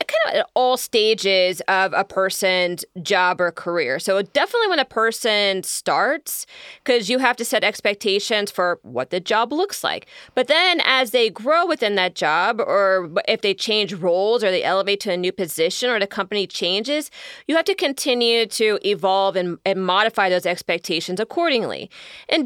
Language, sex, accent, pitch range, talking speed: English, female, American, 185-260 Hz, 175 wpm